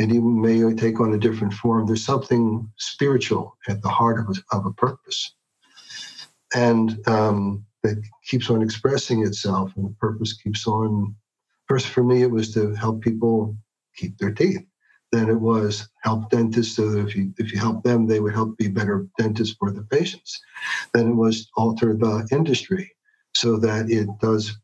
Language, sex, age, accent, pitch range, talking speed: English, male, 50-69, American, 105-120 Hz, 180 wpm